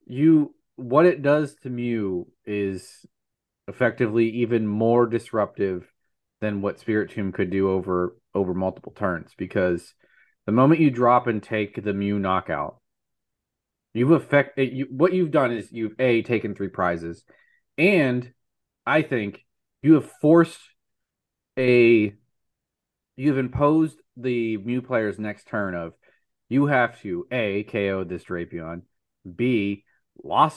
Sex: male